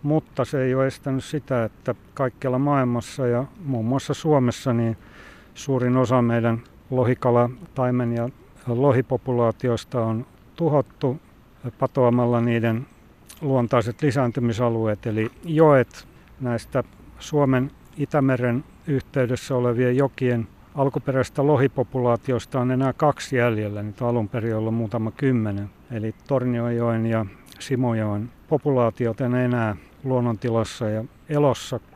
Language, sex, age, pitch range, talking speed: Finnish, male, 60-79, 120-135 Hz, 105 wpm